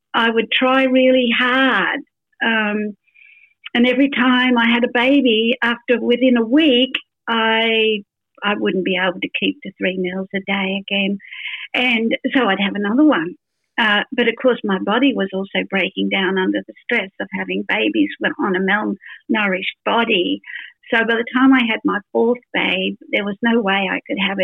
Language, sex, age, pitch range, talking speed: English, female, 50-69, 200-260 Hz, 175 wpm